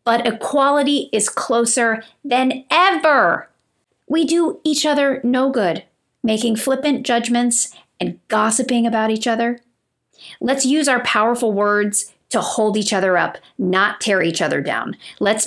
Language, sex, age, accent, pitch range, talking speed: English, female, 40-59, American, 200-270 Hz, 140 wpm